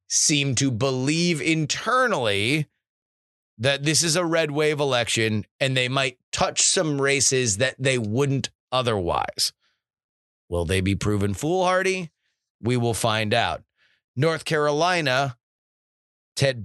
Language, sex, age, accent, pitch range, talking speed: English, male, 30-49, American, 115-155 Hz, 120 wpm